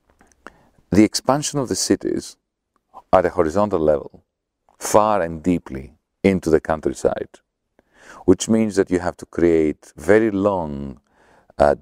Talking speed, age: 125 wpm, 40-59